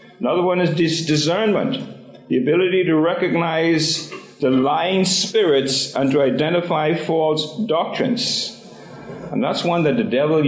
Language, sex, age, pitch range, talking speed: English, male, 50-69, 140-175 Hz, 125 wpm